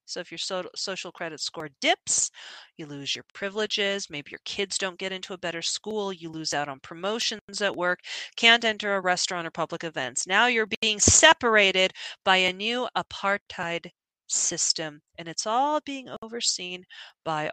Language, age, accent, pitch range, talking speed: English, 40-59, American, 165-240 Hz, 170 wpm